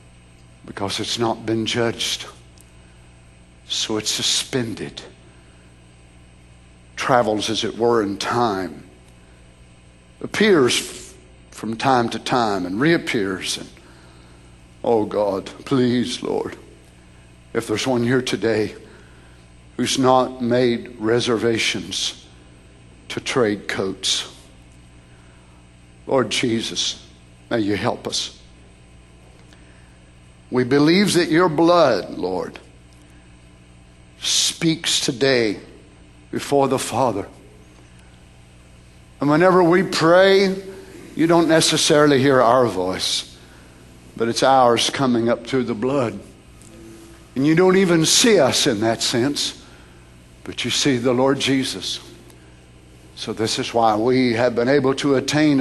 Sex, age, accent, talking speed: male, 60-79, American, 105 wpm